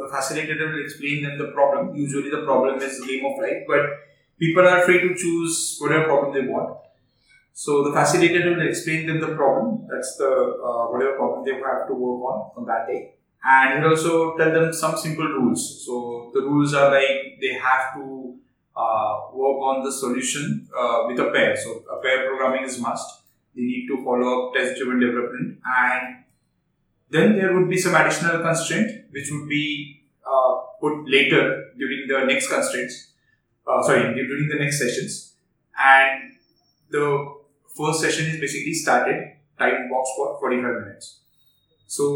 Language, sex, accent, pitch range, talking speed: English, male, Indian, 130-160 Hz, 175 wpm